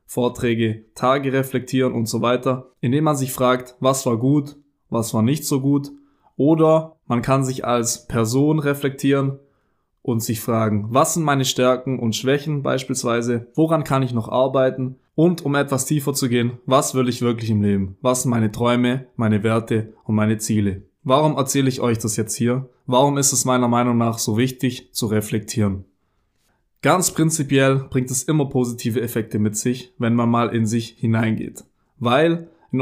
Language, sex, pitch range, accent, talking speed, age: German, male, 115-135 Hz, German, 175 wpm, 20-39